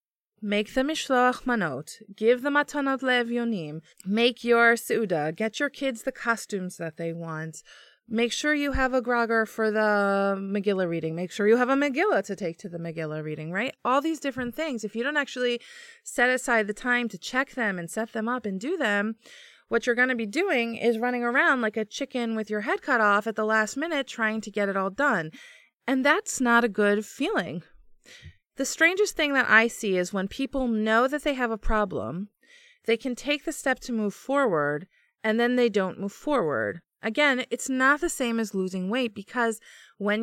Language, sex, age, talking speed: English, female, 20-39, 205 wpm